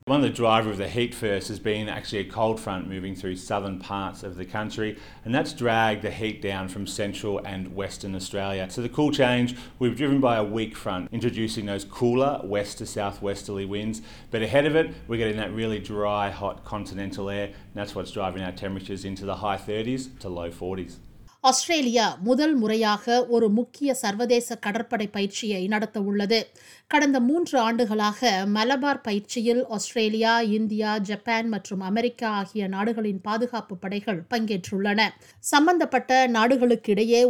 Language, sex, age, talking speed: Tamil, male, 30-49, 165 wpm